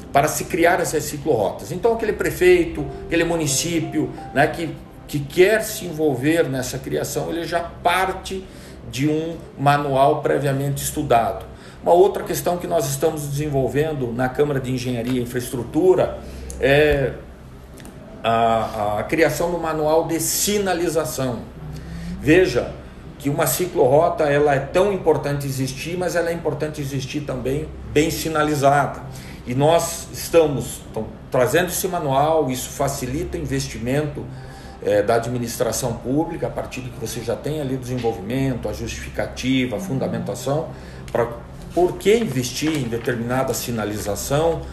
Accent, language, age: Brazilian, Portuguese, 50-69